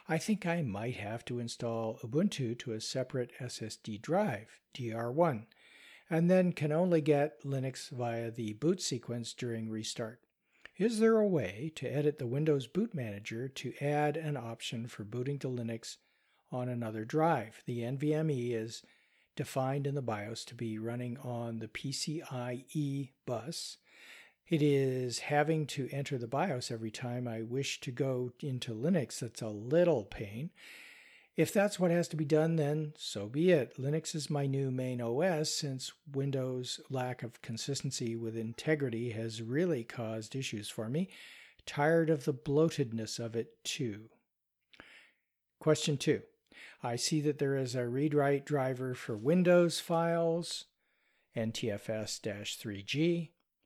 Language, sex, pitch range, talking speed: English, male, 115-155 Hz, 145 wpm